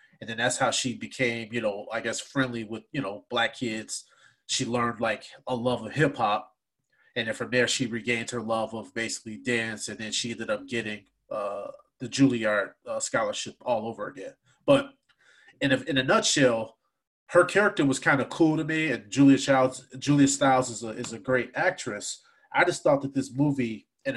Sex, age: male, 30-49